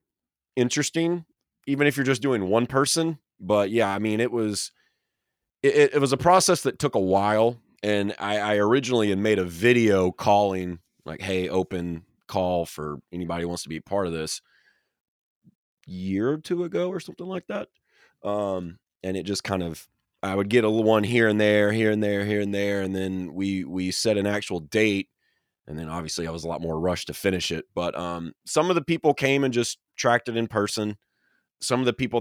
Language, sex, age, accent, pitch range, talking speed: English, male, 30-49, American, 90-115 Hz, 210 wpm